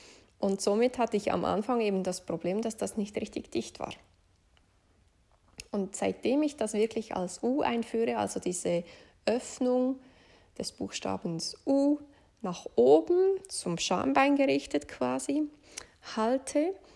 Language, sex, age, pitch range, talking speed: German, female, 20-39, 170-230 Hz, 125 wpm